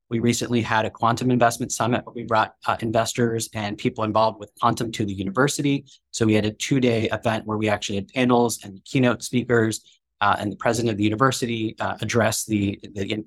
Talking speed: 205 wpm